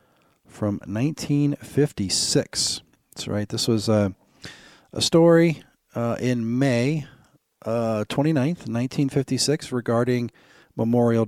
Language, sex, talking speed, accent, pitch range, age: English, male, 90 wpm, American, 110-140 Hz, 40-59